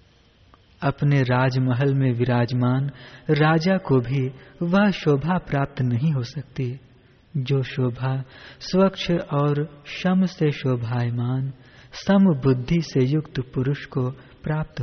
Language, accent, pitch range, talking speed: Hindi, native, 125-160 Hz, 110 wpm